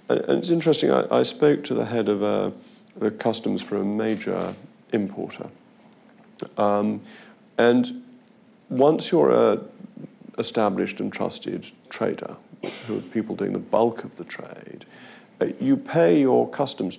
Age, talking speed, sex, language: 50-69, 140 wpm, male, English